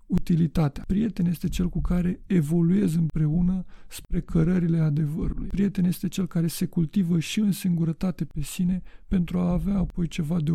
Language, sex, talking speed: Romanian, male, 160 wpm